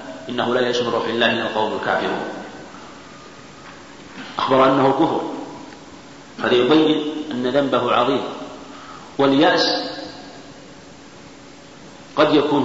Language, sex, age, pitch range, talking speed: Arabic, male, 50-69, 120-140 Hz, 85 wpm